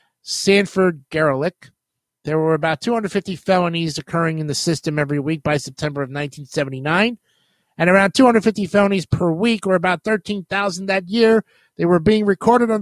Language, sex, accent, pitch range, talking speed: English, male, American, 155-210 Hz, 150 wpm